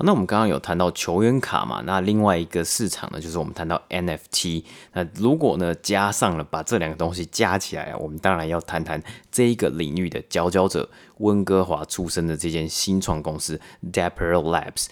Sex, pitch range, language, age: male, 85-105 Hz, Chinese, 20-39